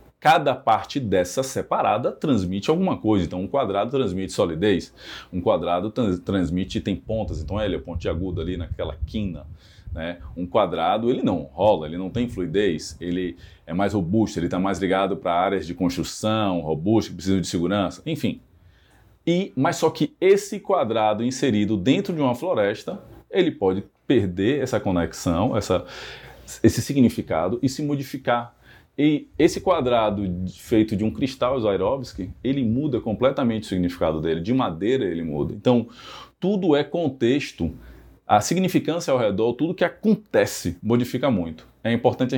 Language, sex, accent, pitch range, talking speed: Portuguese, male, Brazilian, 90-130 Hz, 155 wpm